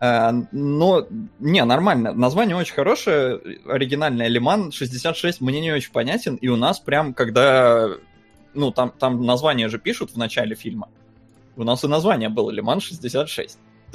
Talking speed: 145 wpm